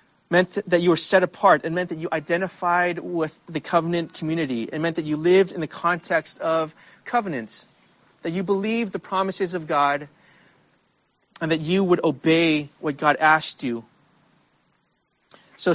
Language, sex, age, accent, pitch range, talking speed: English, male, 30-49, American, 145-175 Hz, 160 wpm